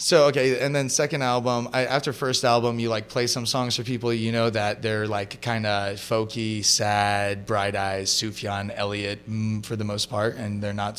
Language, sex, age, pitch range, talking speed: English, male, 30-49, 105-120 Hz, 200 wpm